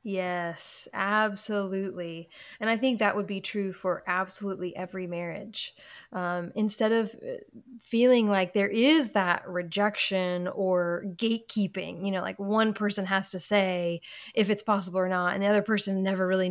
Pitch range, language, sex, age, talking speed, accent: 180-215 Hz, English, female, 20-39, 155 wpm, American